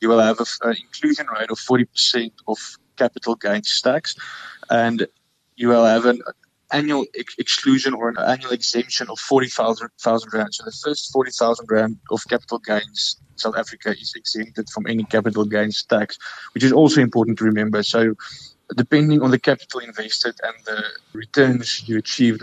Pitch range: 110-130 Hz